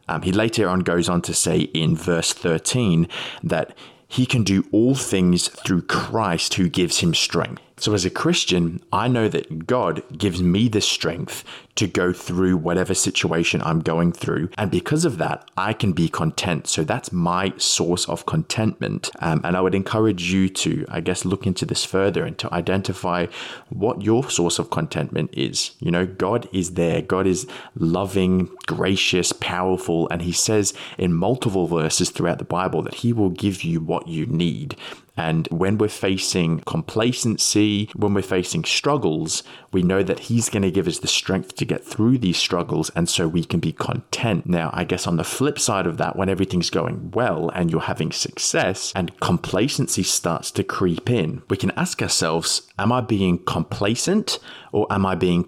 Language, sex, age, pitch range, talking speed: English, male, 20-39, 85-105 Hz, 185 wpm